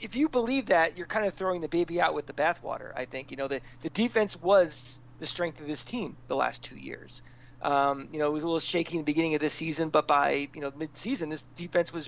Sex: male